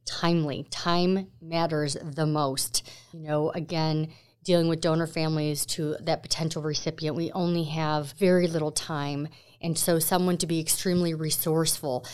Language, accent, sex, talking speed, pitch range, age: English, American, female, 145 wpm, 150-175 Hz, 30-49